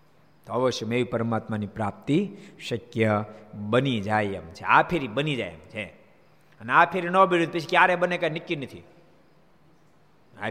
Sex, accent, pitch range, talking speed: male, native, 120-160 Hz, 160 wpm